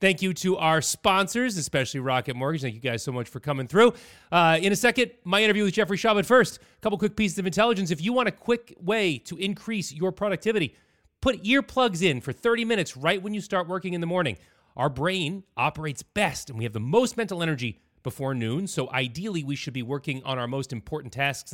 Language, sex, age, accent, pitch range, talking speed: English, male, 30-49, American, 135-200 Hz, 225 wpm